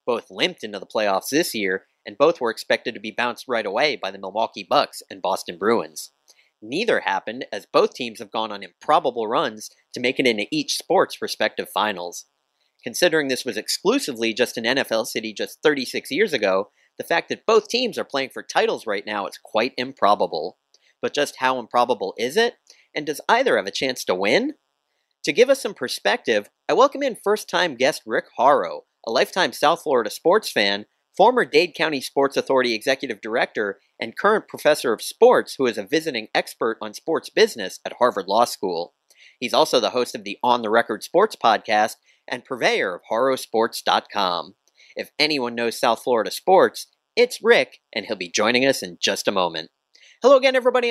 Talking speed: 185 wpm